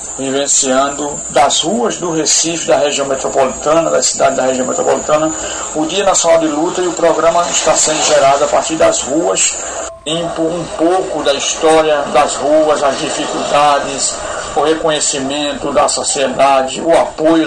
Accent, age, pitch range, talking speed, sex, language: Brazilian, 60-79, 140-170 Hz, 150 wpm, male, Portuguese